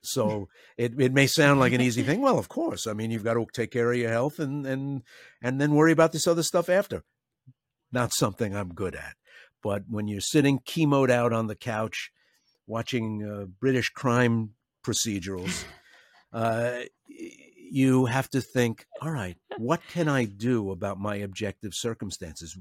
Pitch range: 100-135 Hz